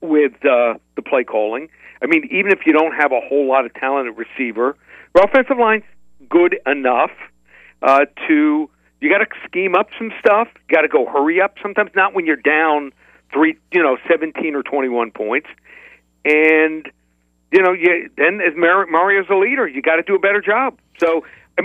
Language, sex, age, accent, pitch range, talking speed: English, male, 50-69, American, 125-195 Hz, 190 wpm